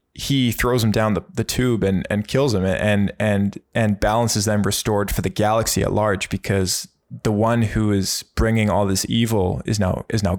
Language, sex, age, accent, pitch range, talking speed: English, male, 20-39, American, 100-115 Hz, 200 wpm